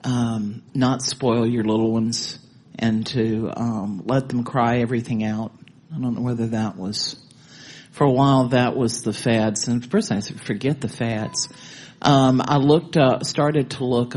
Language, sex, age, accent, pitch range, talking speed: English, male, 50-69, American, 115-135 Hz, 175 wpm